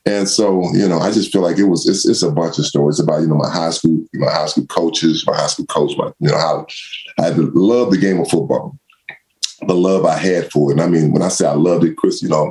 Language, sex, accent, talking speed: English, male, American, 290 wpm